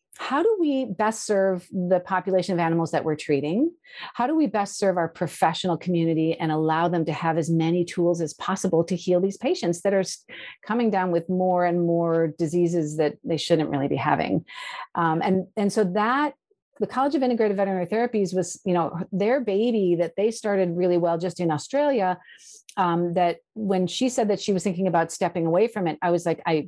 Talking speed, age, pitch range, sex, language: 205 wpm, 50-69, 165-200 Hz, female, English